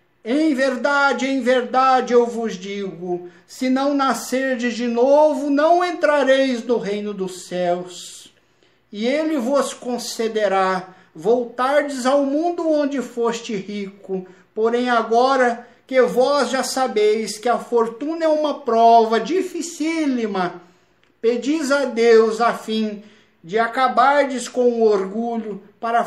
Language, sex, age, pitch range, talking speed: Portuguese, male, 50-69, 200-265 Hz, 120 wpm